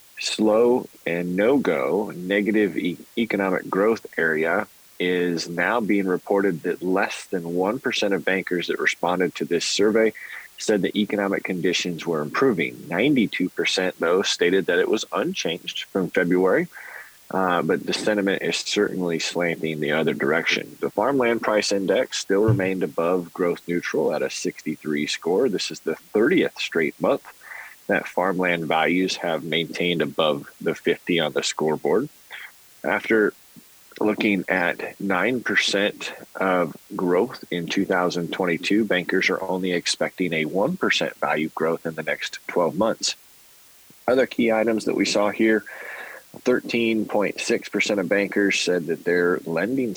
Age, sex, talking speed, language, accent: 30-49, male, 135 wpm, English, American